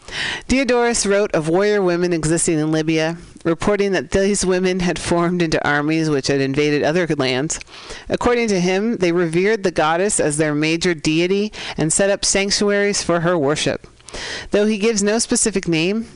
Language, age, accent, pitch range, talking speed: English, 40-59, American, 150-190 Hz, 165 wpm